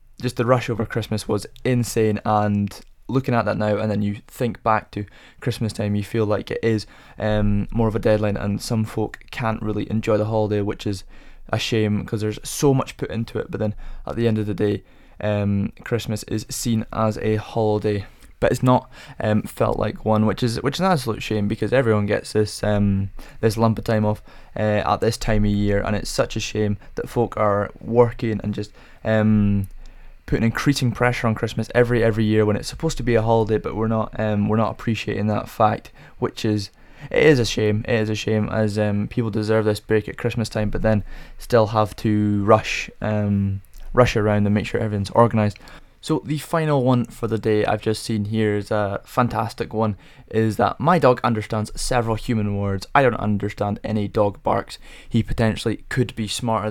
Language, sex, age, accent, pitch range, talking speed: English, male, 20-39, British, 105-115 Hz, 210 wpm